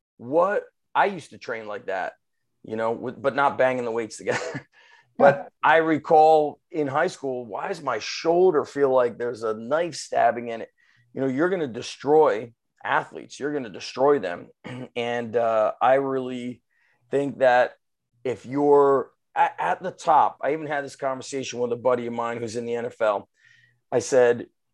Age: 30-49